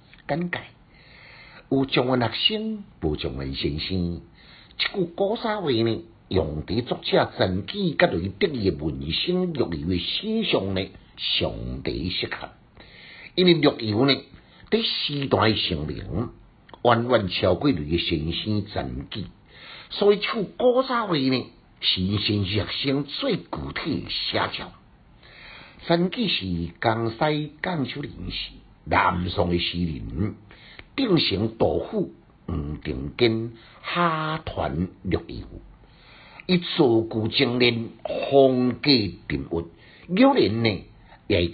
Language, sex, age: Chinese, male, 60-79